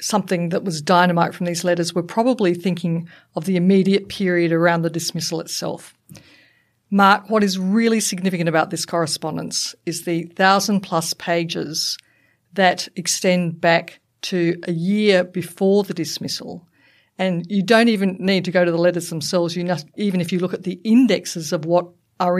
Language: English